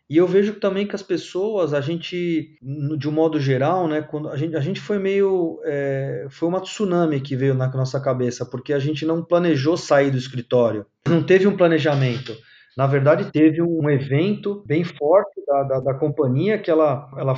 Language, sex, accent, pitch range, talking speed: Portuguese, male, Brazilian, 140-175 Hz, 185 wpm